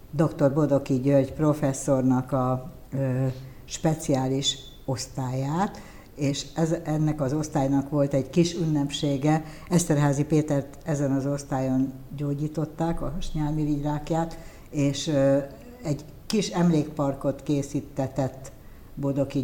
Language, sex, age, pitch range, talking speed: Hungarian, female, 60-79, 135-150 Hz, 100 wpm